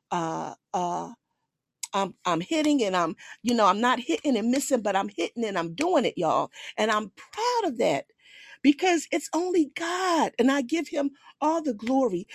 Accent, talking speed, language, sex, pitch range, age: American, 185 wpm, English, female, 185-295 Hz, 50-69